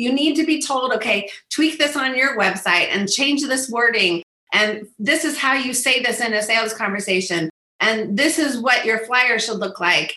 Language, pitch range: English, 190-275 Hz